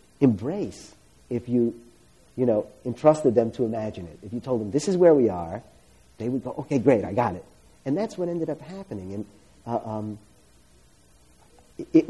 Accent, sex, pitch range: American, male, 105-150 Hz